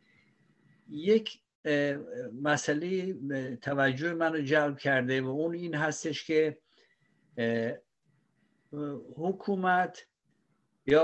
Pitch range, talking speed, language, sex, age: 125-150 Hz, 70 wpm, Persian, male, 60-79